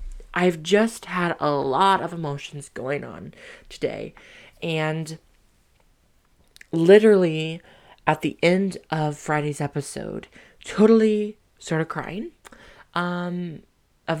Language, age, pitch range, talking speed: English, 20-39, 150-185 Hz, 100 wpm